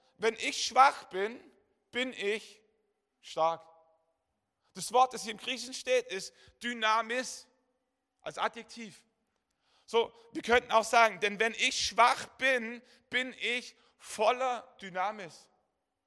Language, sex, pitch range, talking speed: German, male, 190-250 Hz, 120 wpm